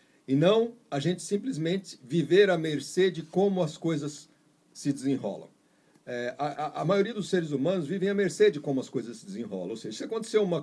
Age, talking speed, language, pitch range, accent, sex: 50-69, 205 wpm, Portuguese, 130-175 Hz, Brazilian, male